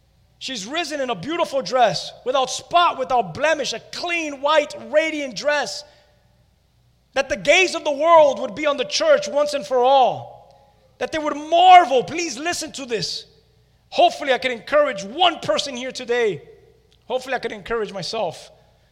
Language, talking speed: English, 160 wpm